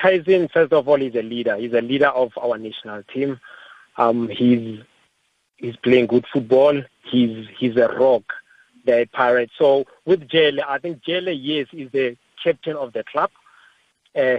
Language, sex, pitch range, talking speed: English, male, 120-145 Hz, 165 wpm